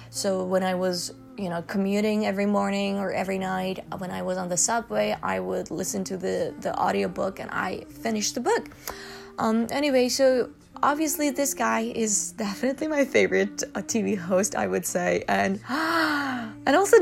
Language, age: Chinese, 20-39